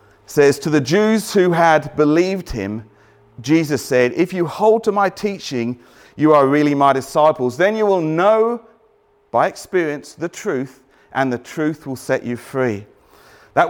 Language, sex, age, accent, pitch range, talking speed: English, male, 40-59, British, 150-200 Hz, 160 wpm